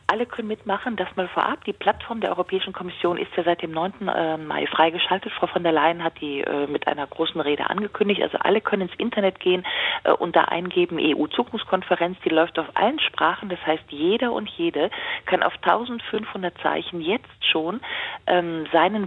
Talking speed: 175 wpm